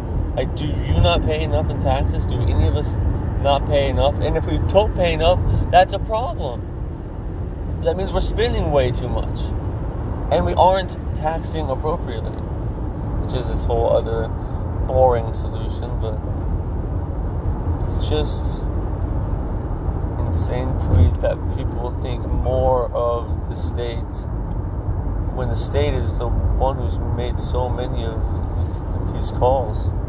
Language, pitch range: English, 85-105 Hz